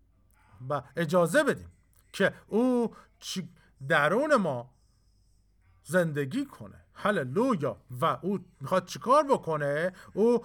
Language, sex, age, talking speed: Persian, male, 50-69, 90 wpm